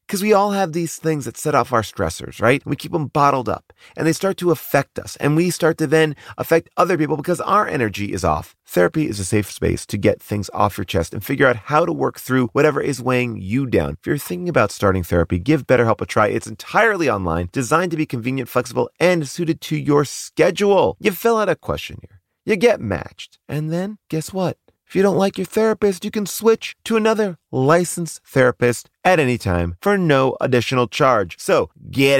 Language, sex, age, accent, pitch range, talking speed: English, male, 30-49, American, 105-165 Hz, 215 wpm